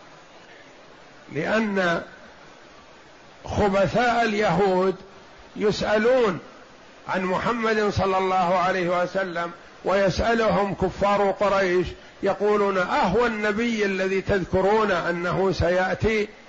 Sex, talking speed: male, 75 wpm